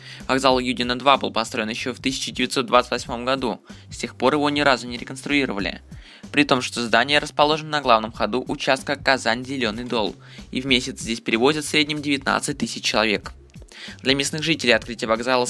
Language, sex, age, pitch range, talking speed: Russian, male, 20-39, 115-140 Hz, 165 wpm